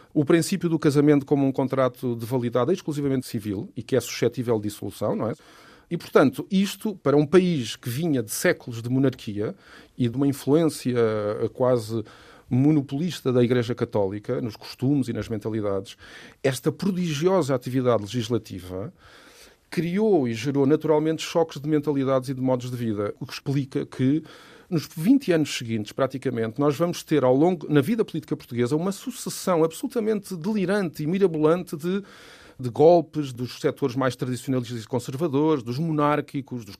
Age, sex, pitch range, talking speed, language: 40-59, male, 130-165 Hz, 160 wpm, Portuguese